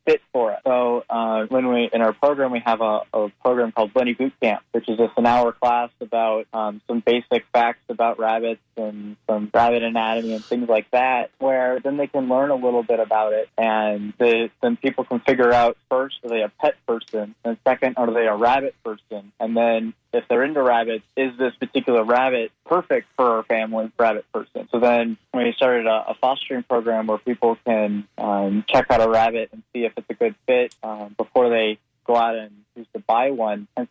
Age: 20-39